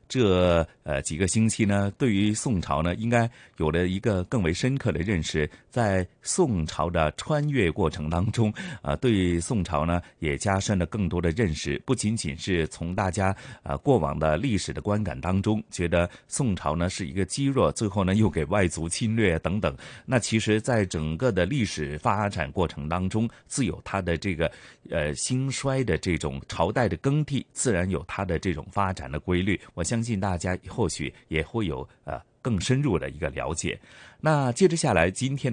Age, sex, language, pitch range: 30-49, male, Chinese, 85-120 Hz